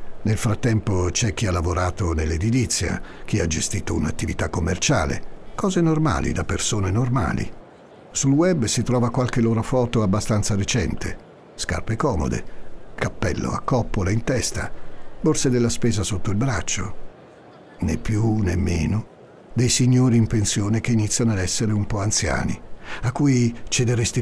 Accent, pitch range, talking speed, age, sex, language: native, 95-120 Hz, 140 wpm, 60-79, male, Italian